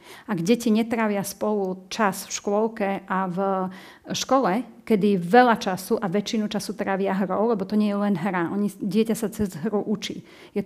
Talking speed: 175 wpm